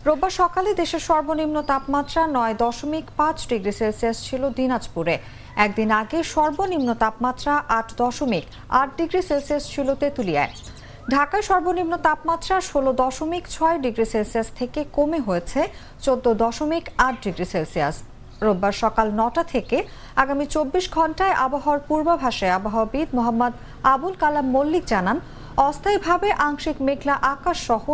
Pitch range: 225-310 Hz